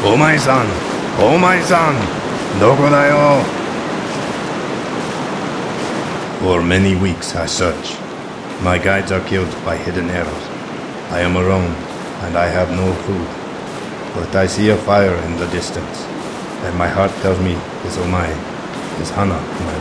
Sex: male